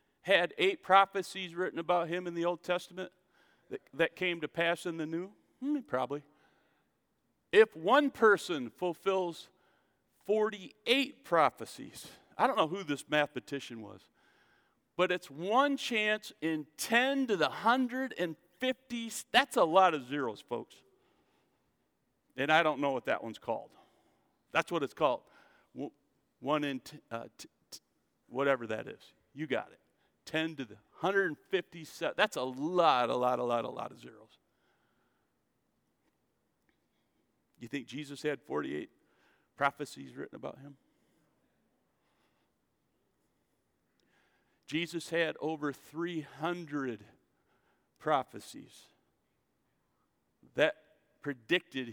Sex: male